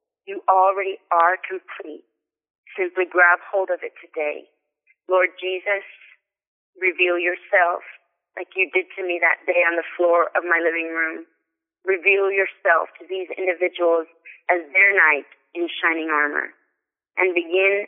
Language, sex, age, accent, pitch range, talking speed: English, female, 30-49, American, 170-210 Hz, 140 wpm